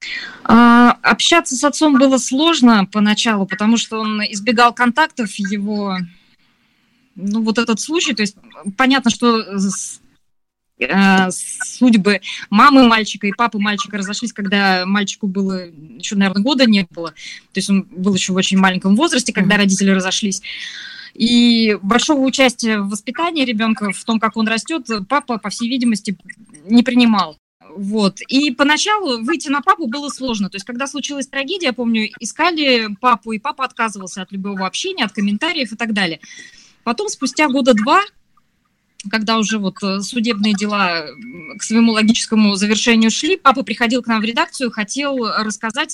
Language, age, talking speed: Russian, 20-39, 150 wpm